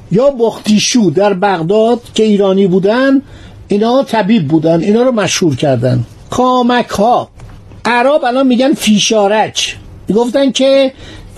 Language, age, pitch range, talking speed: Persian, 60-79, 170-245 Hz, 120 wpm